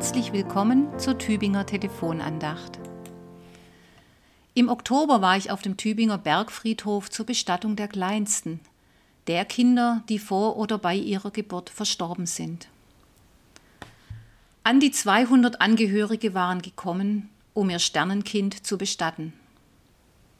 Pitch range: 175-225 Hz